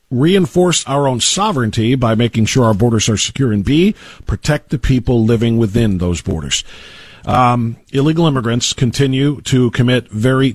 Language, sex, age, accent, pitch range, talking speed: English, male, 50-69, American, 120-150 Hz, 155 wpm